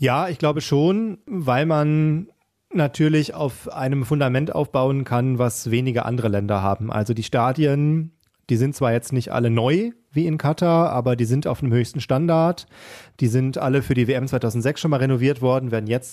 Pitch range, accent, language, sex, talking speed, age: 115-145 Hz, German, German, male, 185 wpm, 30-49